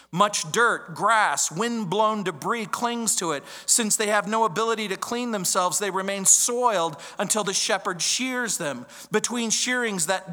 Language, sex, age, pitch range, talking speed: English, male, 40-59, 165-225 Hz, 155 wpm